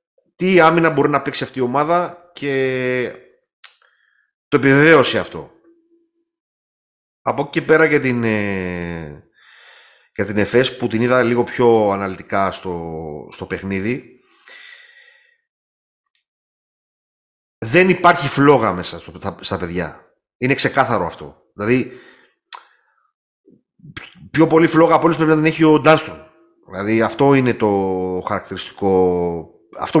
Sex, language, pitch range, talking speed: male, Greek, 100-160 Hz, 115 wpm